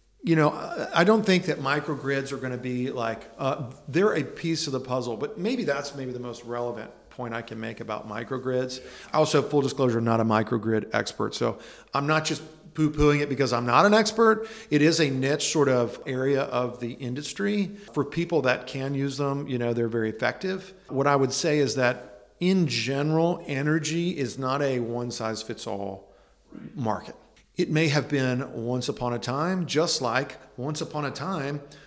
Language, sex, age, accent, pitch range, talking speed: English, male, 50-69, American, 125-165 Hz, 190 wpm